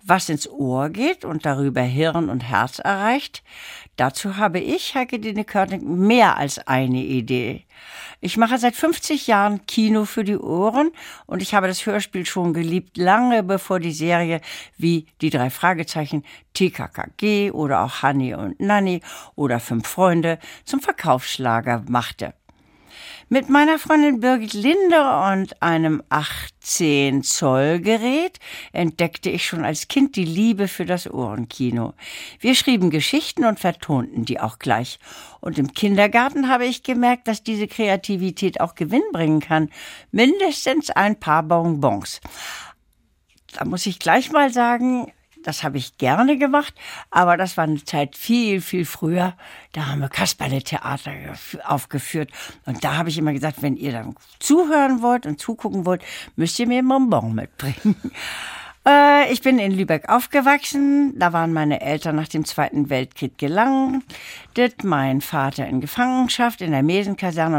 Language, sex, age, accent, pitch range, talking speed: German, female, 60-79, German, 150-235 Hz, 145 wpm